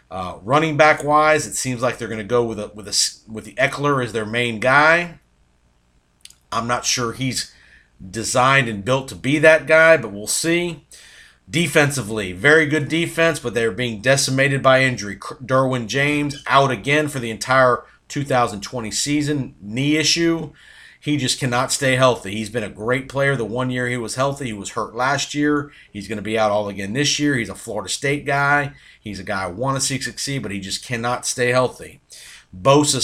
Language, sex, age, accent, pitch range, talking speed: English, male, 40-59, American, 110-145 Hz, 185 wpm